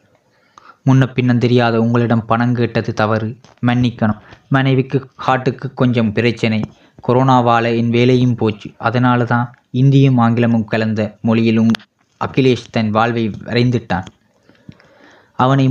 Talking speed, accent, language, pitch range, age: 100 wpm, native, Tamil, 115-130 Hz, 20-39